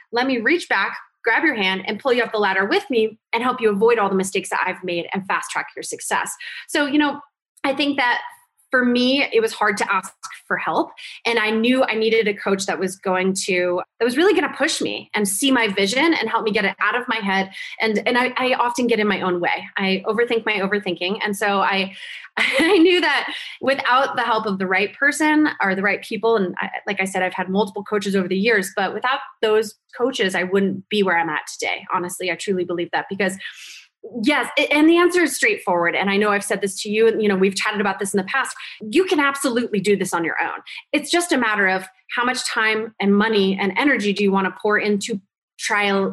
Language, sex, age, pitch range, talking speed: English, female, 20-39, 195-270 Hz, 245 wpm